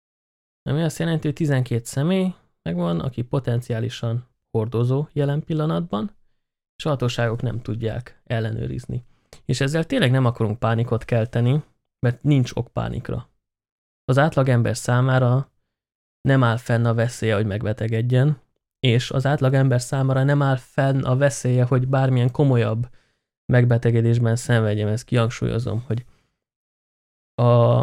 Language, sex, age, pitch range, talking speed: Hungarian, male, 20-39, 115-130 Hz, 125 wpm